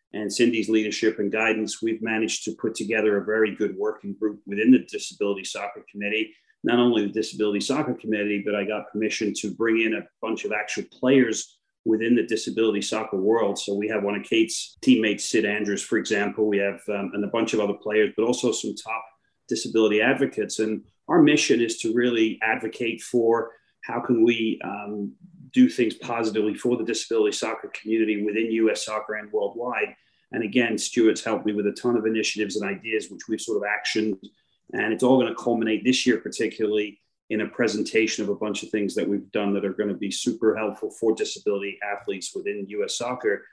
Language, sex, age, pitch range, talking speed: English, male, 40-59, 105-115 Hz, 200 wpm